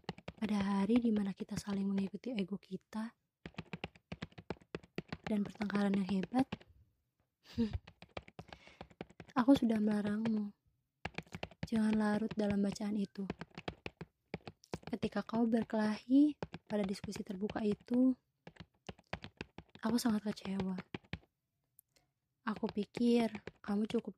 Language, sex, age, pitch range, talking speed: Indonesian, female, 20-39, 195-230 Hz, 85 wpm